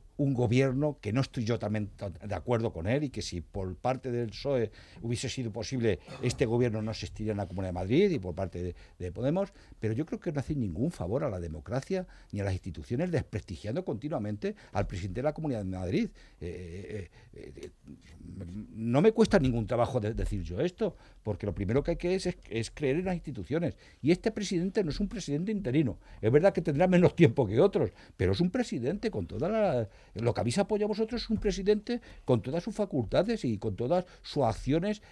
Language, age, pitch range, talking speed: Spanish, 60-79, 105-160 Hz, 210 wpm